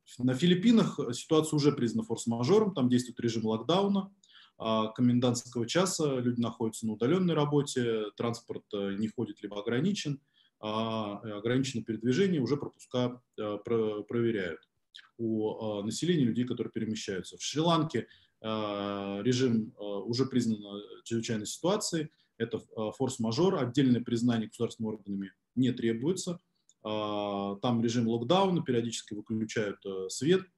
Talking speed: 105 wpm